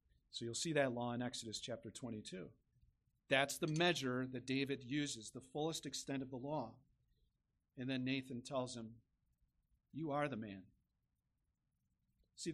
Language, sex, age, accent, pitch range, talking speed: English, male, 40-59, American, 125-160 Hz, 150 wpm